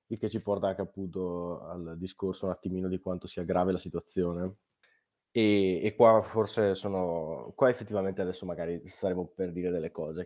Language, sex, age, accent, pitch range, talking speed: Italian, male, 20-39, native, 85-105 Hz, 170 wpm